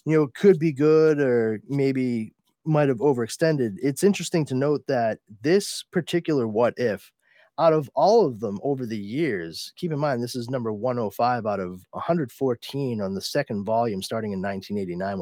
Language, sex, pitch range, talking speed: English, male, 110-140 Hz, 175 wpm